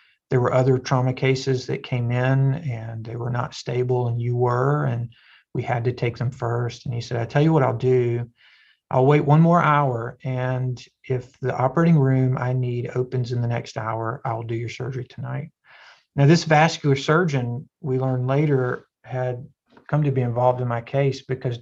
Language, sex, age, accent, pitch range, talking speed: English, male, 40-59, American, 125-140 Hz, 195 wpm